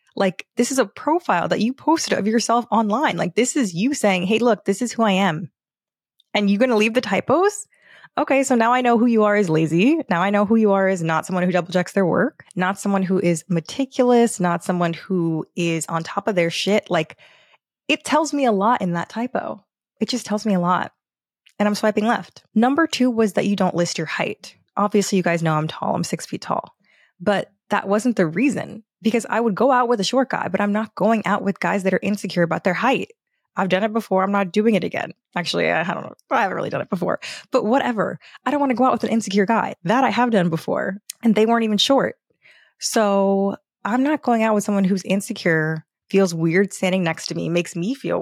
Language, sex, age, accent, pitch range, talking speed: English, female, 20-39, American, 180-235 Hz, 240 wpm